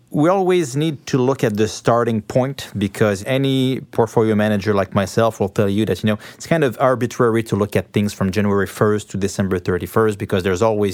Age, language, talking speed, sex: 30-49, English, 210 wpm, male